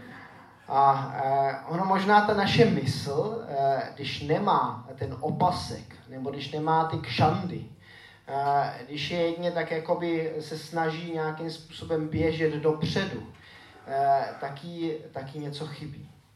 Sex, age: male, 20-39